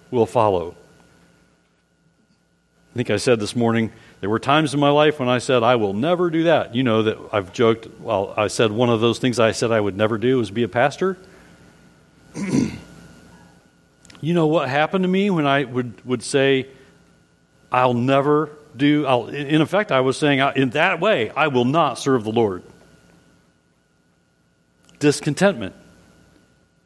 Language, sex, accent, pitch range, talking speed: English, male, American, 120-165 Hz, 165 wpm